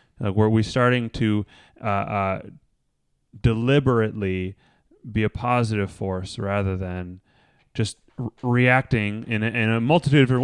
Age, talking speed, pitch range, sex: 30-49, 120 wpm, 95-120 Hz, male